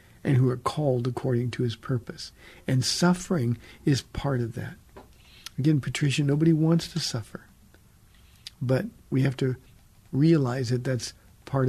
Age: 50-69